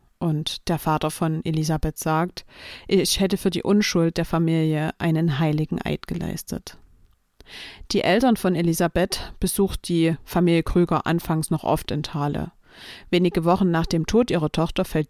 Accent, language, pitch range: German, German, 155-180 Hz